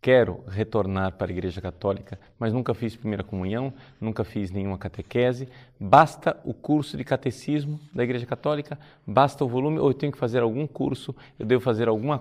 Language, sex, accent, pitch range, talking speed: Portuguese, male, Brazilian, 100-135 Hz, 180 wpm